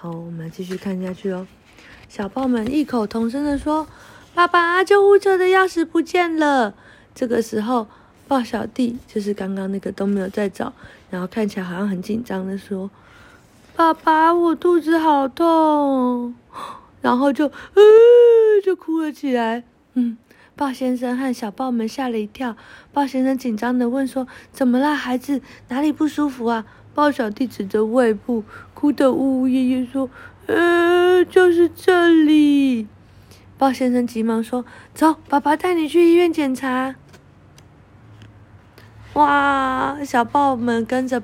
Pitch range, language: 215-295 Hz, Chinese